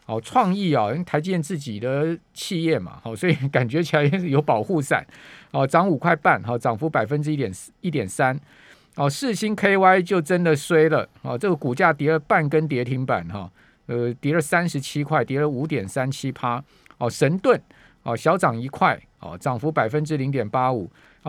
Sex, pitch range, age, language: male, 125-165 Hz, 50-69, Chinese